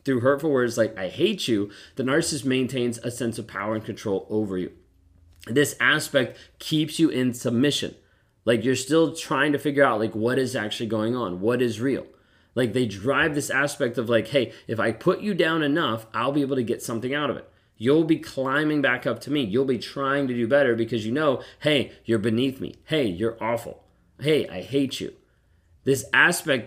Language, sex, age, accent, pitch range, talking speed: English, male, 30-49, American, 115-145 Hz, 205 wpm